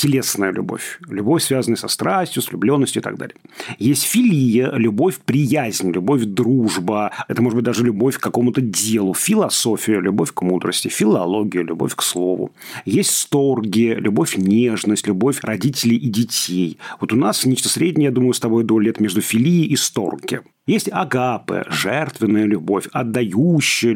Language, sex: Russian, male